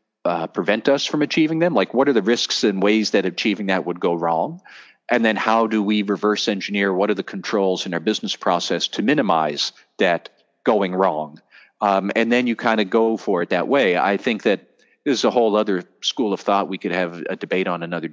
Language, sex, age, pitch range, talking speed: English, male, 40-59, 95-115 Hz, 220 wpm